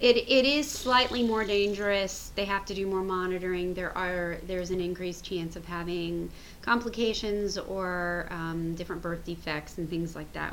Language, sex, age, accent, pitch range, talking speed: English, female, 30-49, American, 165-190 Hz, 170 wpm